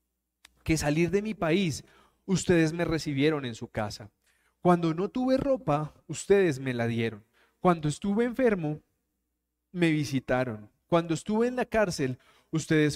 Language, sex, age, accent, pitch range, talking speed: Spanish, male, 30-49, Colombian, 145-205 Hz, 140 wpm